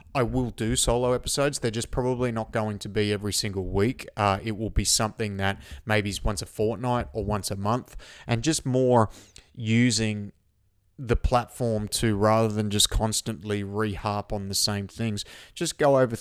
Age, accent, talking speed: 30-49, Australian, 180 wpm